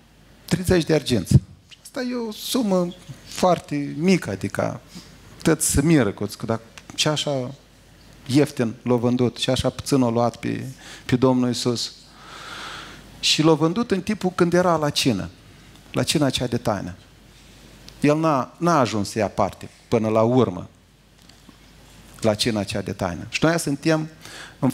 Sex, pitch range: male, 120-160 Hz